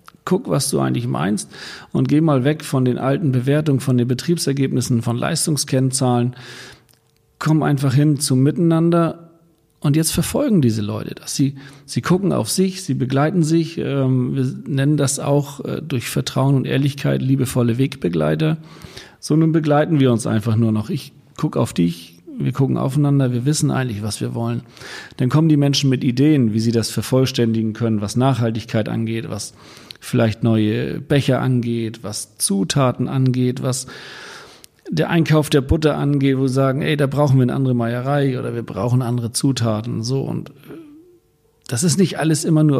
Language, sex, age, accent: German, male, 40-59, German